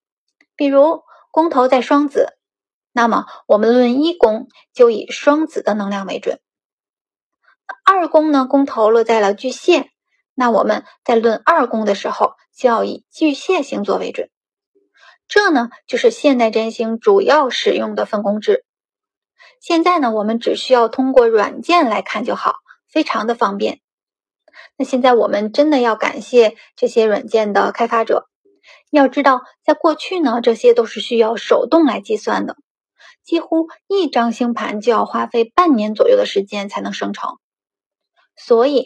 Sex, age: female, 20-39